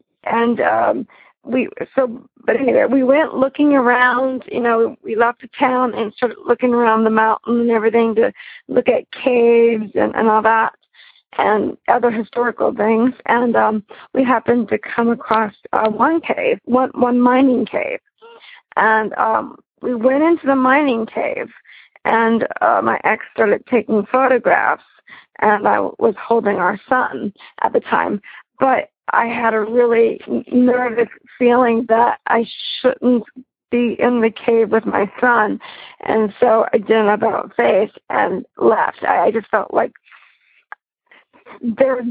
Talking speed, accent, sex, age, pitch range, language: 150 wpm, American, female, 40-59, 225-260 Hz, English